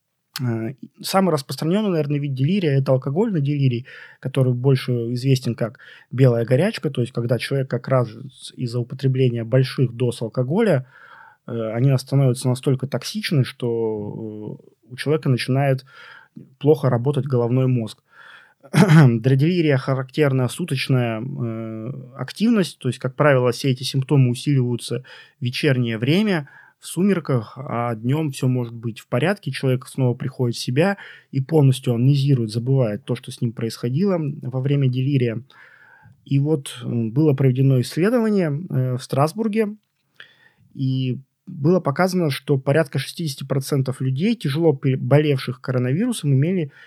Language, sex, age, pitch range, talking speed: Russian, male, 20-39, 125-150 Hz, 125 wpm